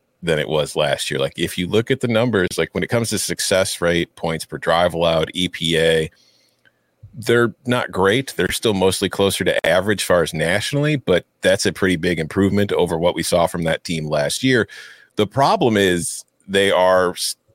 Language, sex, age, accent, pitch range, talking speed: English, male, 40-59, American, 85-120 Hz, 195 wpm